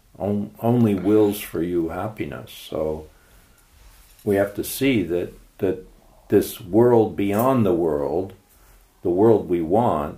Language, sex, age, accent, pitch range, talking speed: English, male, 60-79, American, 80-105 Hz, 130 wpm